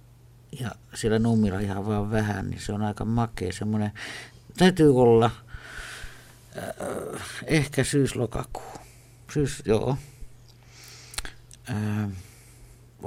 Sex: male